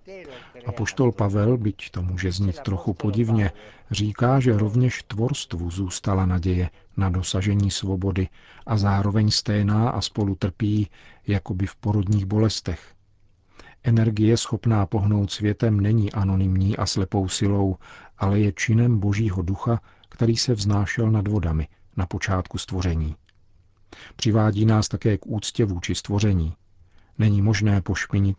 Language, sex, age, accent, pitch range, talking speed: Czech, male, 50-69, native, 95-110 Hz, 125 wpm